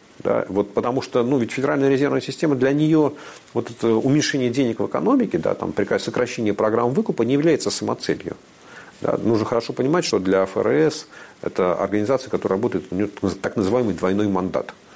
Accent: native